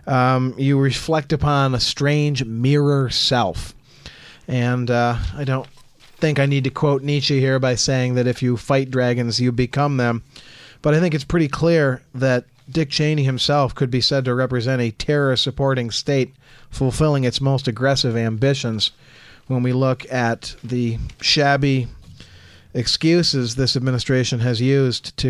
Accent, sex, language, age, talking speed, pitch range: American, male, English, 40-59, 150 wpm, 125-145 Hz